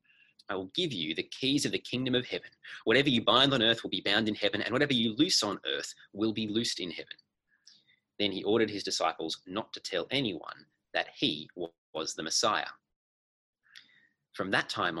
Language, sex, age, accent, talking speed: English, male, 30-49, Australian, 195 wpm